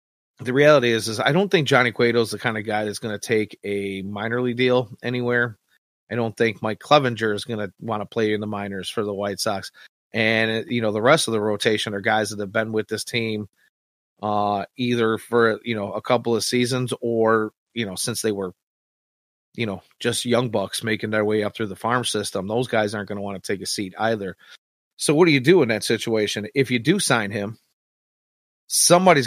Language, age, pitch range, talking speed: English, 30-49, 105-120 Hz, 225 wpm